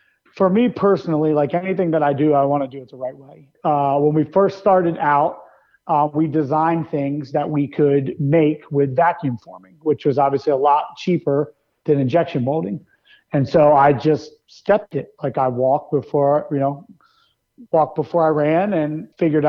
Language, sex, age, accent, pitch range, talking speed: English, male, 40-59, American, 145-160 Hz, 185 wpm